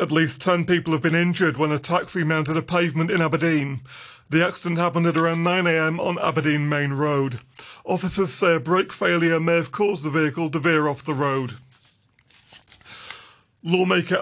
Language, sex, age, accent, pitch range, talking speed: English, male, 40-59, British, 160-185 Hz, 175 wpm